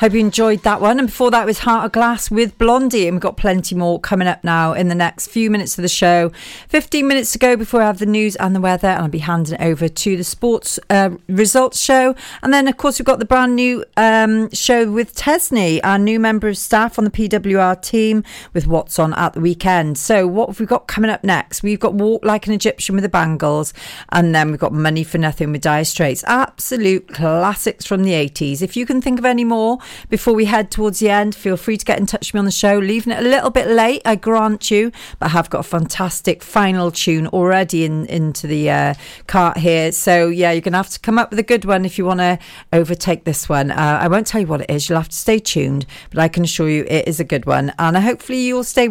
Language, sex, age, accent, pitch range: Japanese, female, 40-59, British, 170-225 Hz